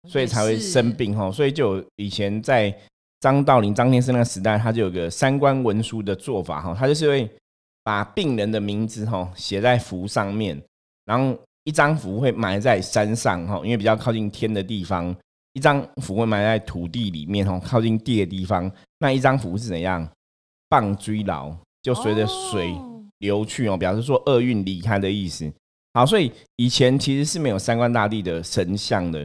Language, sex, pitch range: Chinese, male, 95-130 Hz